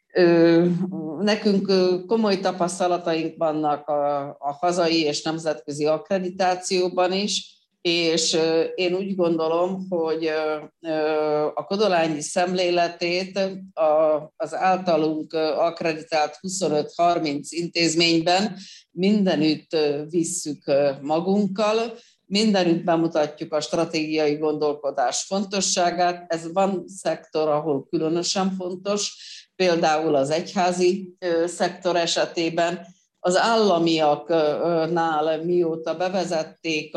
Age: 50-69